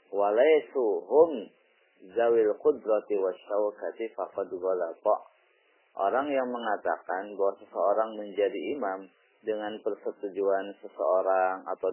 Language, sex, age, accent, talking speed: Indonesian, male, 30-49, native, 75 wpm